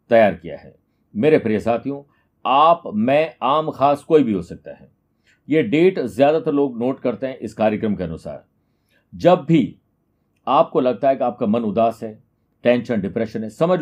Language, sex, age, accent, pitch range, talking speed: Hindi, male, 50-69, native, 125-155 Hz, 175 wpm